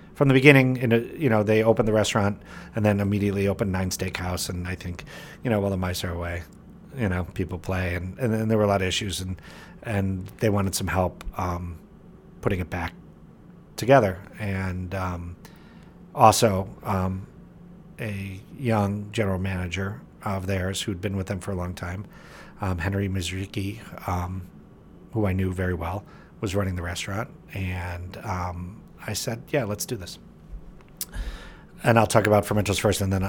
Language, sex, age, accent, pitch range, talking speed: English, male, 40-59, American, 95-115 Hz, 175 wpm